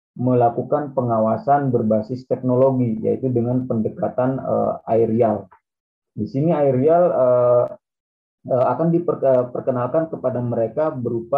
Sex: male